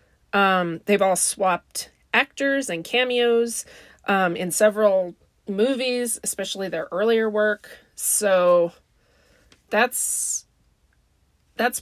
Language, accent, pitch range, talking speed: English, American, 165-210 Hz, 90 wpm